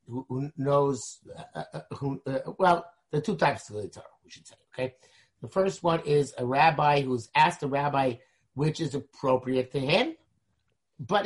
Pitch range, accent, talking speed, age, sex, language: 130-170 Hz, American, 180 wpm, 50-69, male, English